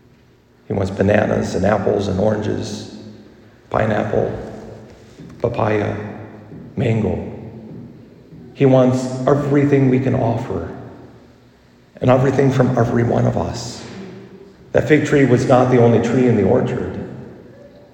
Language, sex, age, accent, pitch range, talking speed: English, male, 50-69, American, 105-135 Hz, 115 wpm